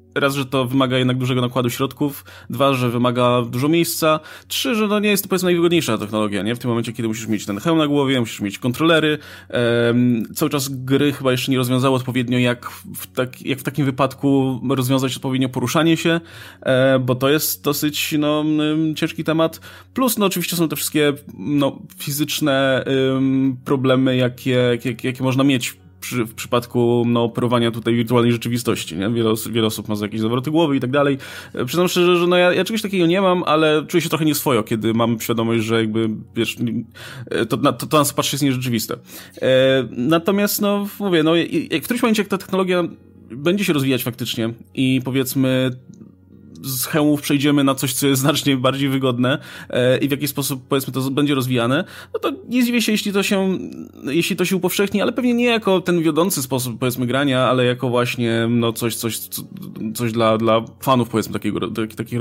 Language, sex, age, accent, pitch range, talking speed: Polish, male, 20-39, native, 120-155 Hz, 185 wpm